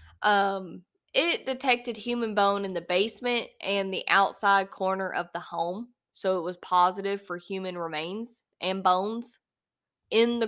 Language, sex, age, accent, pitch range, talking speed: English, female, 10-29, American, 185-230 Hz, 150 wpm